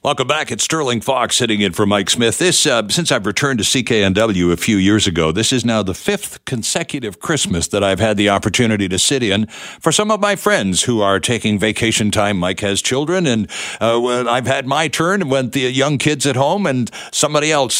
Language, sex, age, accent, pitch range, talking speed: English, male, 60-79, American, 100-145 Hz, 215 wpm